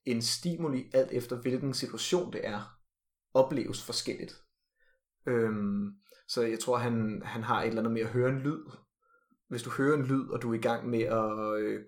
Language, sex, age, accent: Danish, male, 30-49, native